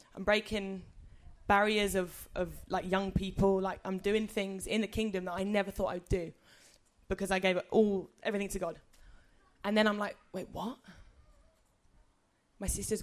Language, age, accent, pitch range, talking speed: English, 20-39, British, 190-225 Hz, 170 wpm